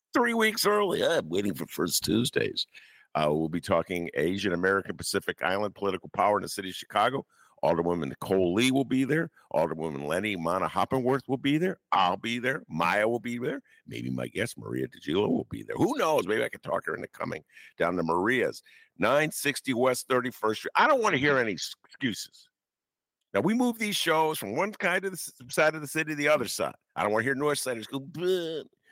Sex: male